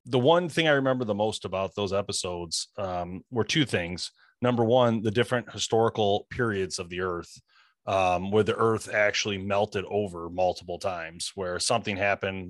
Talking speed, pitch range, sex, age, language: 170 wpm, 95-120 Hz, male, 30-49, English